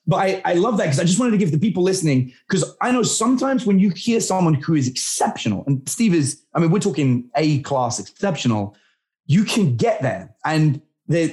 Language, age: English, 30-49